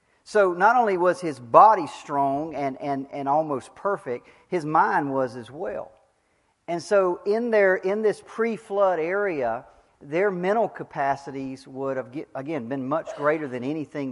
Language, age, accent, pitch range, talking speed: English, 40-59, American, 140-205 Hz, 155 wpm